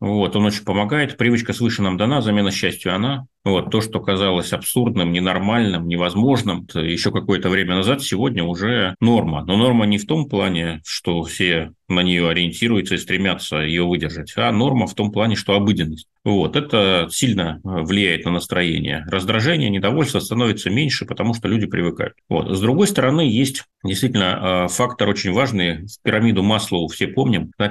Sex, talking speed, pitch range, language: male, 160 wpm, 90-110 Hz, Russian